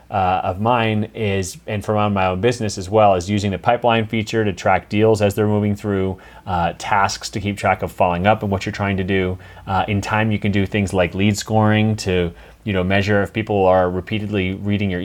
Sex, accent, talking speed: male, American, 225 wpm